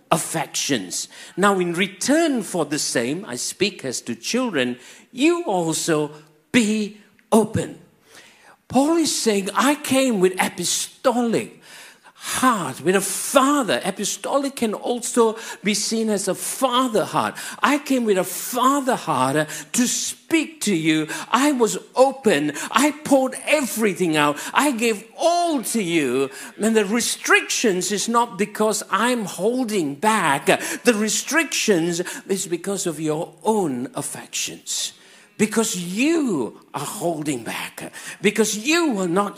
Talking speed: 130 wpm